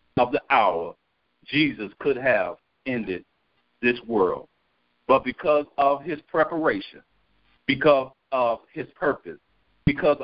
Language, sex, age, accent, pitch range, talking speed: English, male, 50-69, American, 110-145 Hz, 110 wpm